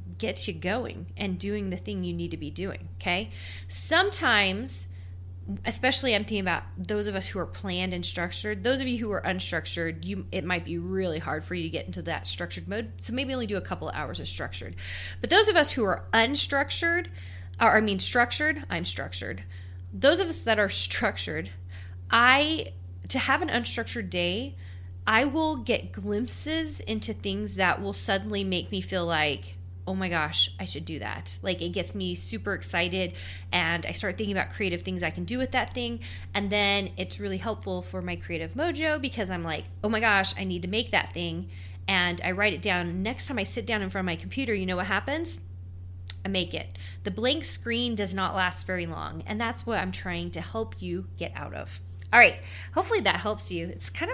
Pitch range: 90-100 Hz